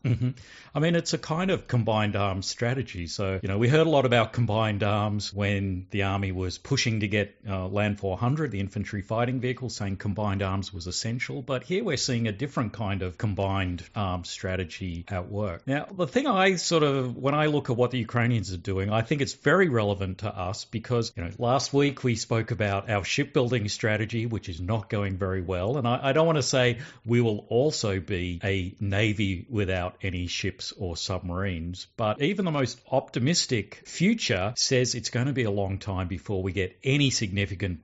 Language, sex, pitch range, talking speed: English, male, 100-125 Hz, 205 wpm